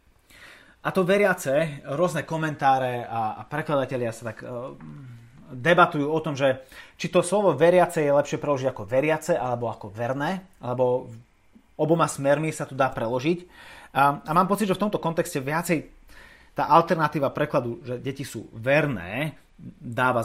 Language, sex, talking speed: Slovak, male, 140 wpm